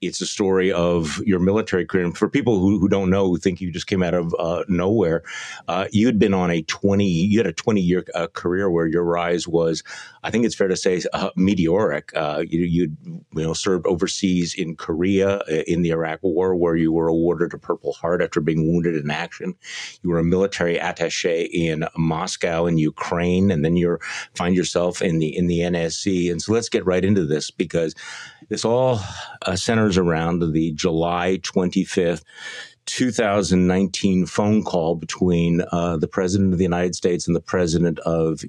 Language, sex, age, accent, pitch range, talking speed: English, male, 50-69, American, 85-100 Hz, 195 wpm